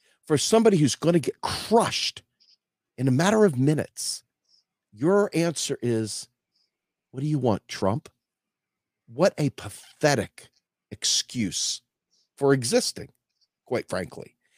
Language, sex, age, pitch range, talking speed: English, male, 50-69, 130-180 Hz, 115 wpm